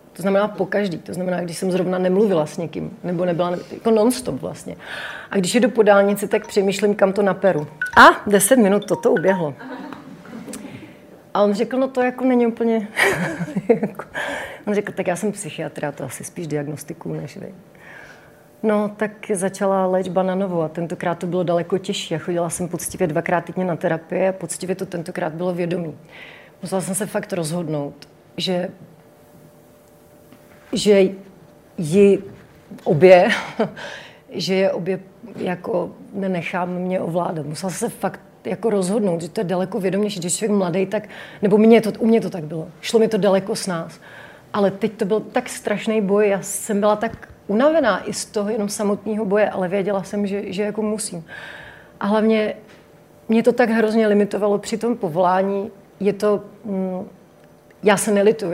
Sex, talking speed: female, 165 wpm